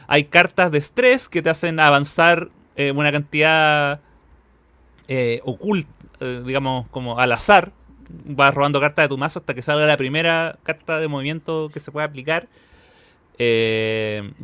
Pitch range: 125-170 Hz